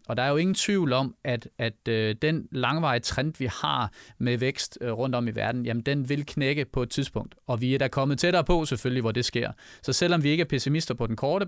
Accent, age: native, 30-49